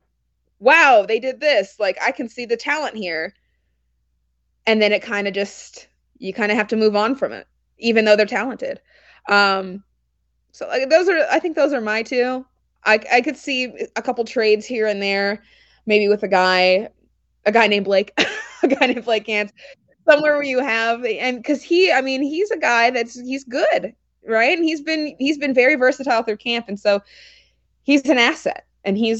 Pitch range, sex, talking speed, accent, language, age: 195-245 Hz, female, 185 wpm, American, English, 20-39